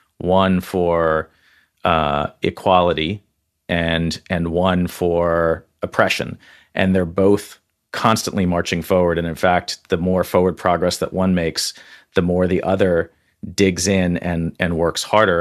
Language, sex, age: English, male, 40-59